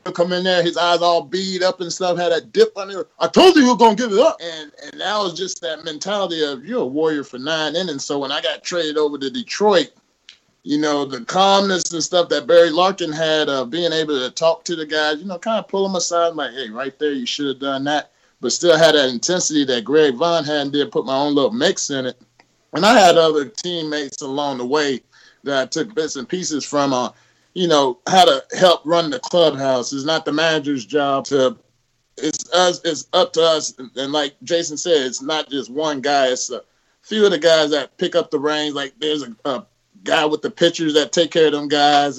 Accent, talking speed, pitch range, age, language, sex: American, 240 wpm, 145-185 Hz, 30-49, English, male